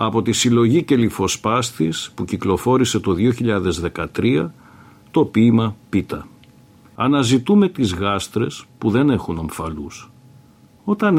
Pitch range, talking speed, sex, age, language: 90-125 Hz, 100 wpm, male, 50-69, Greek